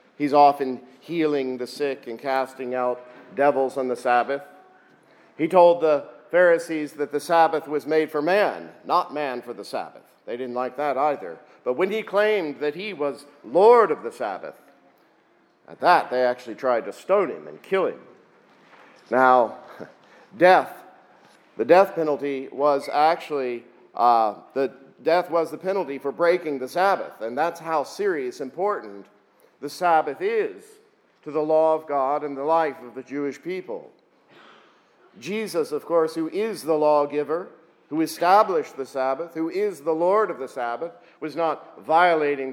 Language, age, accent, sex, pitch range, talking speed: English, 50-69, American, male, 140-180 Hz, 160 wpm